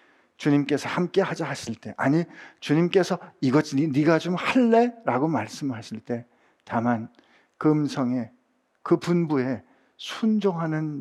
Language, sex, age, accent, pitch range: Korean, male, 50-69, native, 130-175 Hz